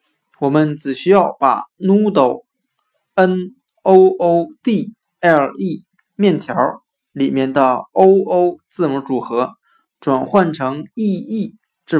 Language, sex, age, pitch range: Chinese, male, 20-39, 140-195 Hz